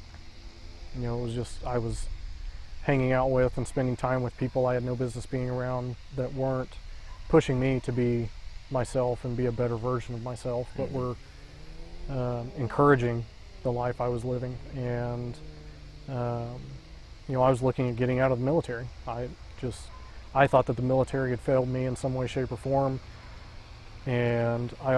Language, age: English, 30-49